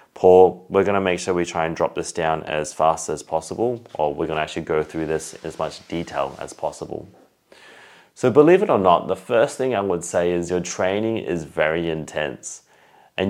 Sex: male